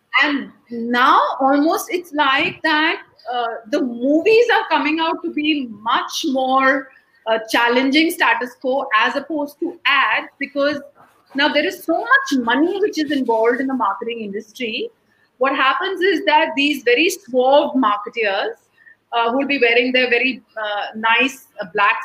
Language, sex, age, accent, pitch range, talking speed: English, female, 30-49, Indian, 230-295 Hz, 150 wpm